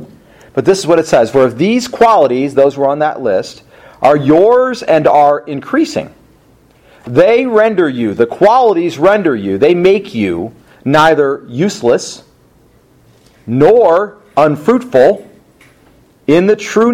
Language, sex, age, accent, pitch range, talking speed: English, male, 40-59, American, 130-205 Hz, 130 wpm